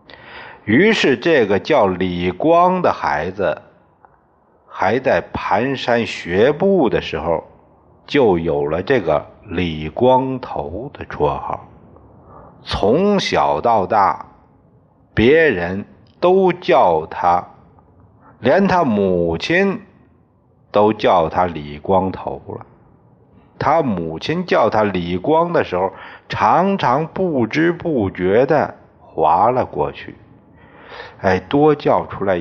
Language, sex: Chinese, male